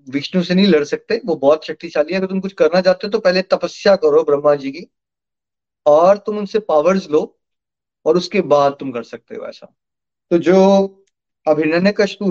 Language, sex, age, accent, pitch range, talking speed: Hindi, male, 30-49, native, 170-230 Hz, 185 wpm